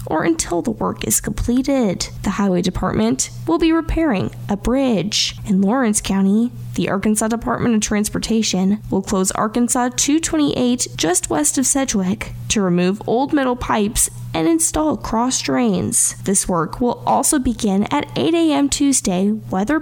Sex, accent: female, American